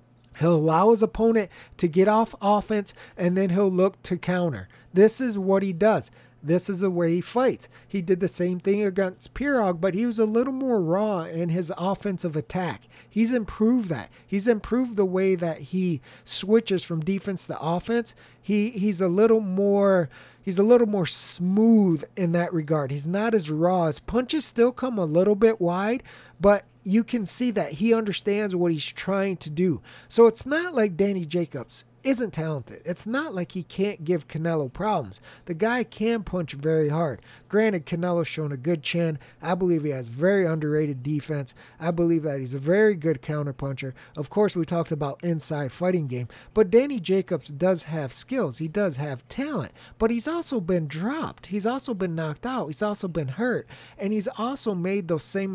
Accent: American